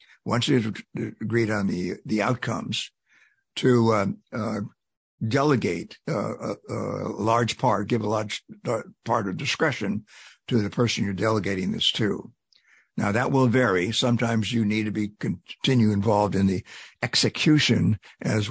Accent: American